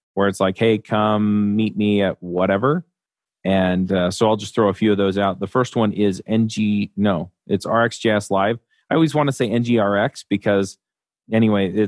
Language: English